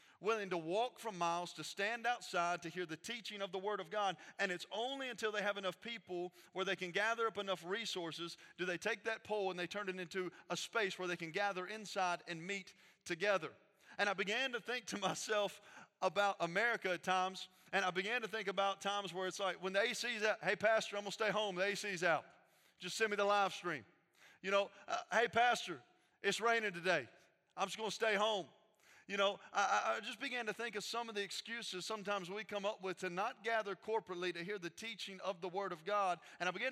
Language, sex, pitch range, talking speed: English, male, 180-215 Hz, 230 wpm